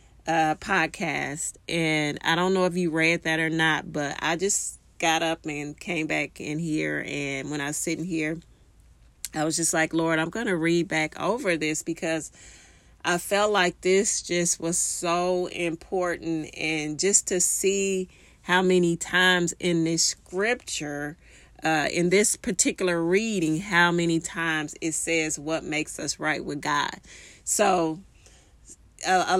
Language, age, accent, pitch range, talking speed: English, 30-49, American, 160-195 Hz, 155 wpm